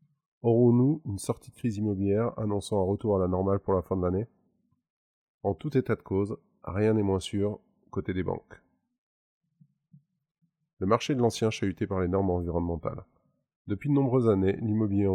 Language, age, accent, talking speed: French, 20-39, French, 170 wpm